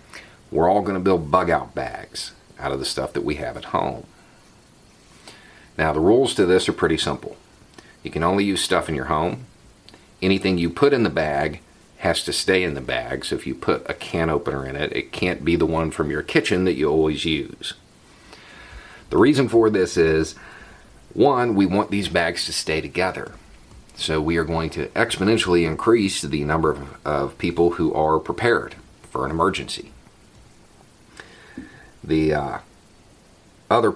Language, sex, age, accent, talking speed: English, male, 40-59, American, 175 wpm